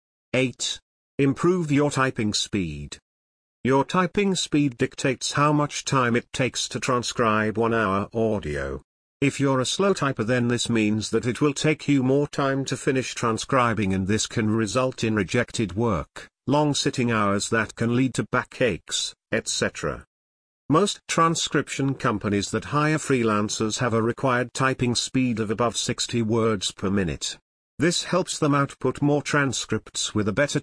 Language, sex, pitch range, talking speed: English, male, 110-140 Hz, 155 wpm